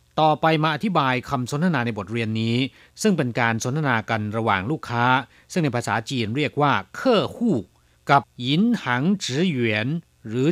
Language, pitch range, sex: Chinese, 115-185 Hz, male